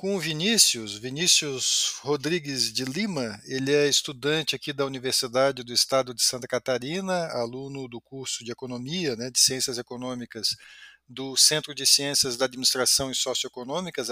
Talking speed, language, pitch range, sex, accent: 150 wpm, Portuguese, 130-170 Hz, male, Brazilian